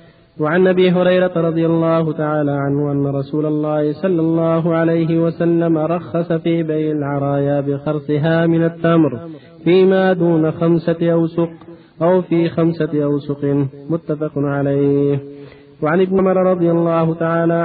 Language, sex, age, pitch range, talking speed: Arabic, male, 40-59, 150-170 Hz, 125 wpm